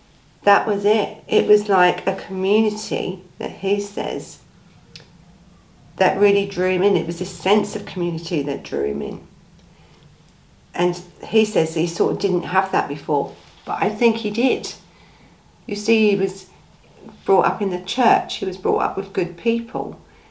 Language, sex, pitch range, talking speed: English, female, 150-195 Hz, 170 wpm